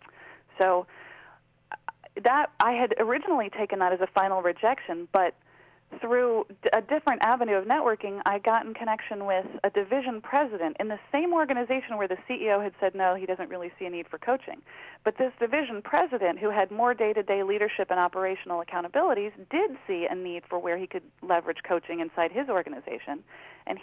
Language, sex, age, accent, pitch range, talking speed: English, female, 40-59, American, 175-230 Hz, 175 wpm